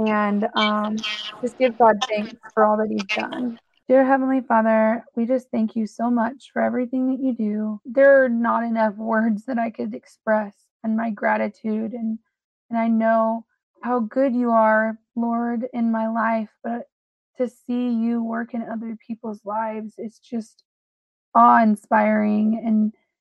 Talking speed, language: 160 wpm, English